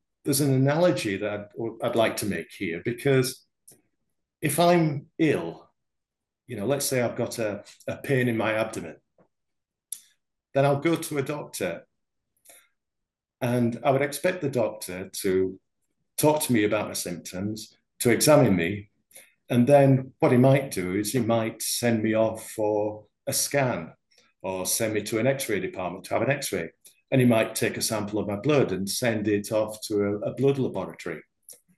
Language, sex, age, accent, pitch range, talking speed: English, male, 50-69, British, 105-135 Hz, 170 wpm